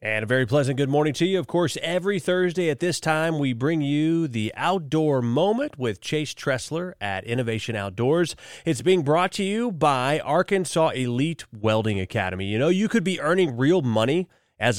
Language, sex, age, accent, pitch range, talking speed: English, male, 30-49, American, 115-160 Hz, 185 wpm